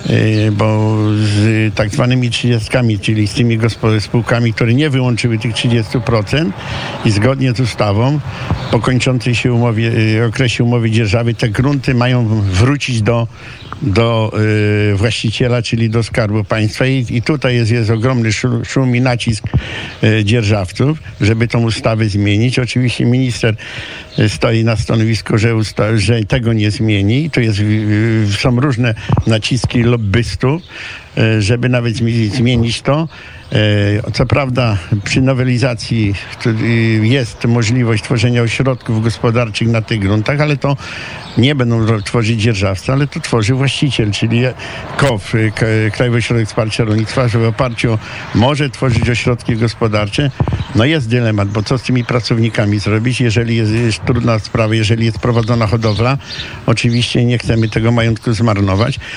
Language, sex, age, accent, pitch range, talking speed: Polish, male, 50-69, native, 110-125 Hz, 135 wpm